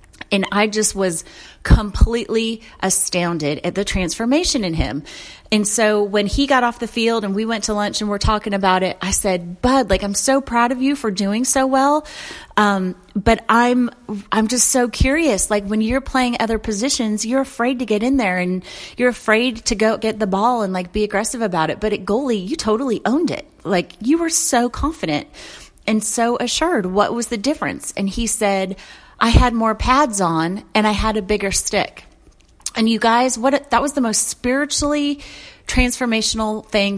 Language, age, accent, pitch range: English, 30-49, American, 190-235 Hz